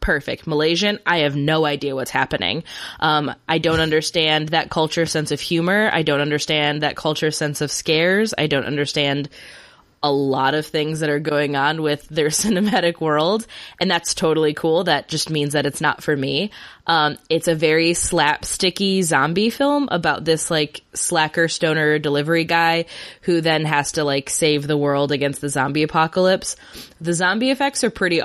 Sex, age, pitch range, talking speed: female, 20-39, 150-195 Hz, 175 wpm